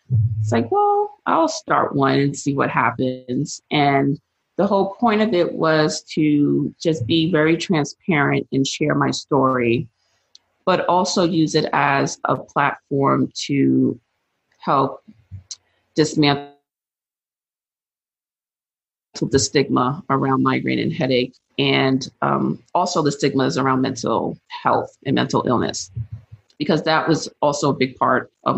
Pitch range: 125-155 Hz